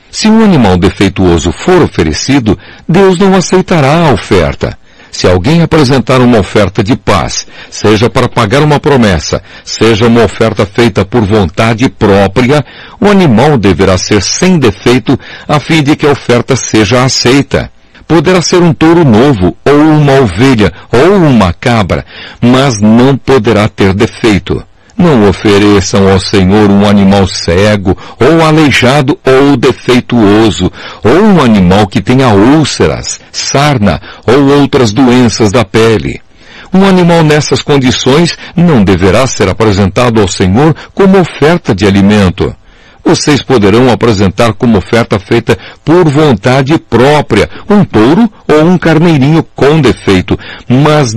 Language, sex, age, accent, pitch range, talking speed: Portuguese, male, 60-79, Brazilian, 100-150 Hz, 135 wpm